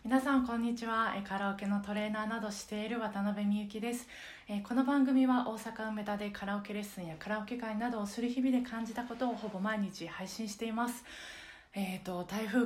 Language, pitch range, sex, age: Japanese, 175-230 Hz, female, 20-39